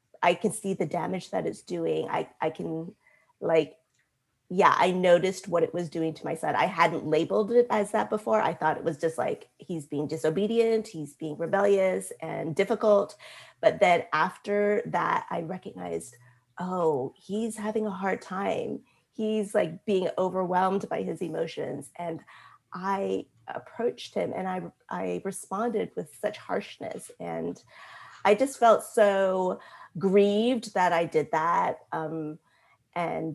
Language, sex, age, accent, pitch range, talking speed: English, female, 30-49, American, 165-210 Hz, 155 wpm